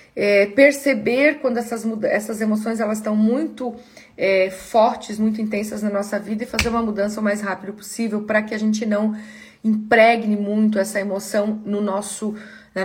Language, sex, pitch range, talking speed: Portuguese, female, 205-240 Hz, 175 wpm